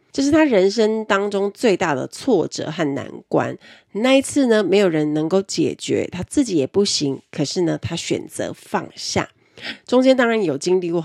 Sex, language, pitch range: female, Chinese, 150-220 Hz